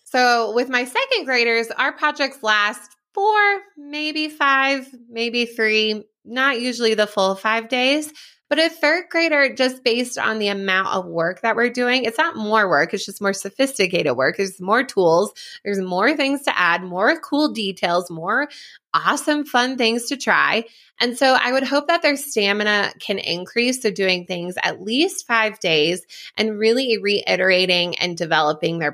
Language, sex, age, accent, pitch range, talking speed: English, female, 20-39, American, 195-260 Hz, 170 wpm